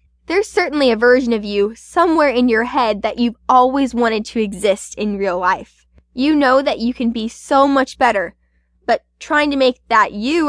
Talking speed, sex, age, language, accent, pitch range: 195 wpm, female, 10-29, English, American, 215-275 Hz